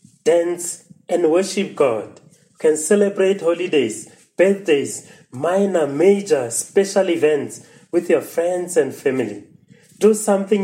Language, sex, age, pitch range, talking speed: English, male, 30-49, 150-190 Hz, 105 wpm